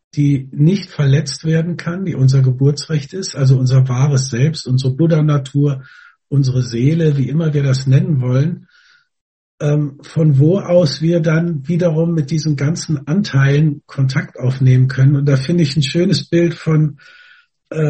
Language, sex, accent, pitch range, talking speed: German, male, German, 130-160 Hz, 150 wpm